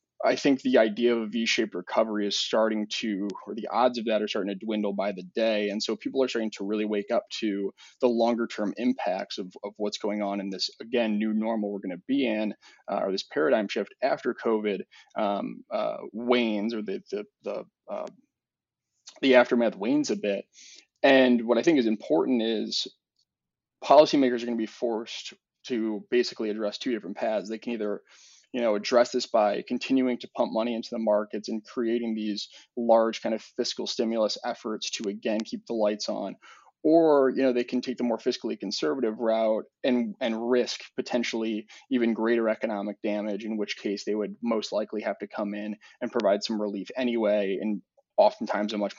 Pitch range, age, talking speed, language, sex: 105-120 Hz, 20-39, 195 wpm, English, male